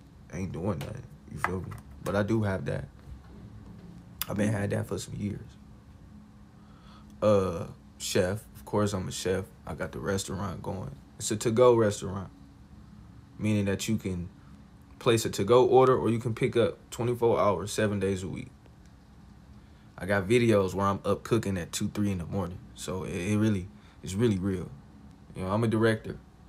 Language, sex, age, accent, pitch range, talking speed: English, male, 20-39, American, 95-110 Hz, 185 wpm